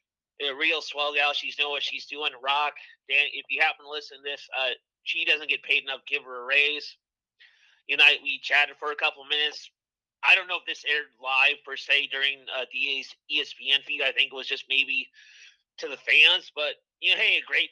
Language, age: English, 30-49